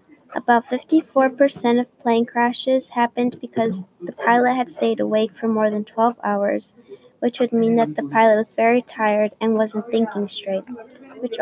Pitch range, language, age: 220-255 Hz, English, 20-39